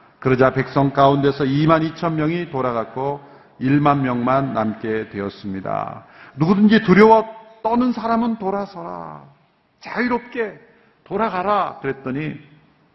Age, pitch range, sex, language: 50-69, 125-190 Hz, male, Korean